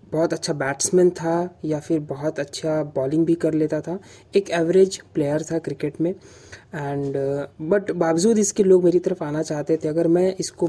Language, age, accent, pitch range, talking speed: Hindi, 20-39, native, 150-180 Hz, 180 wpm